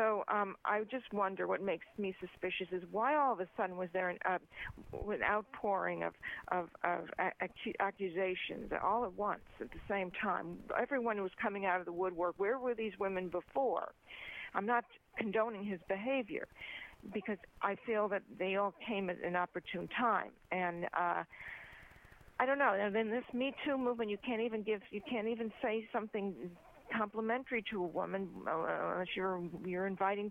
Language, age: English, 50-69